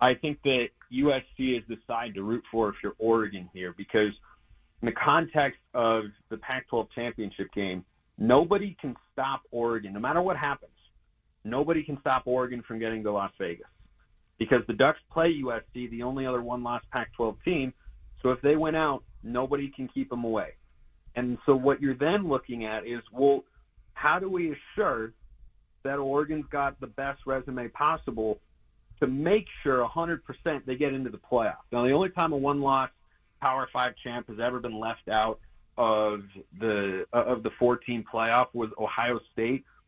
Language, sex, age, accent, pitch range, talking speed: English, male, 40-59, American, 110-140 Hz, 170 wpm